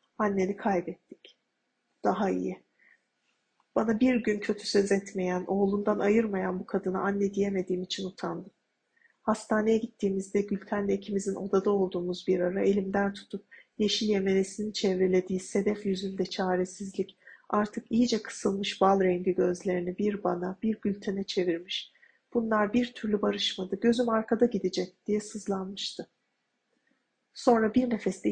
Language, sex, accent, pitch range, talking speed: Turkish, female, native, 190-220 Hz, 125 wpm